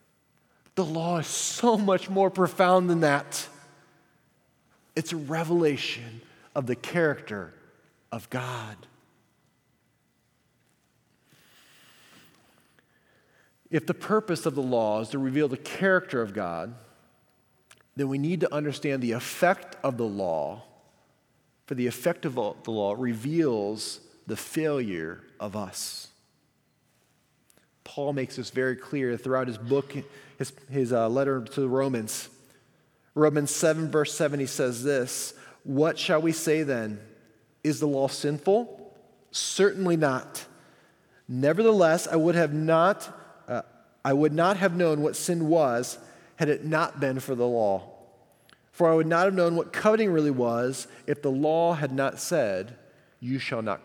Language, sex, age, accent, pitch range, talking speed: English, male, 40-59, American, 125-165 Hz, 140 wpm